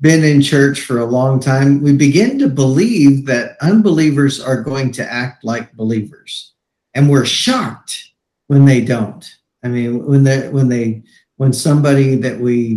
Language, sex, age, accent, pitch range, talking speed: English, male, 50-69, American, 115-140 Hz, 165 wpm